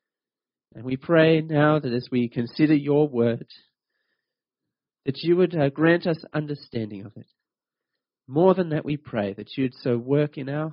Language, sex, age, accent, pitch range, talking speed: English, male, 30-49, Australian, 130-180 Hz, 170 wpm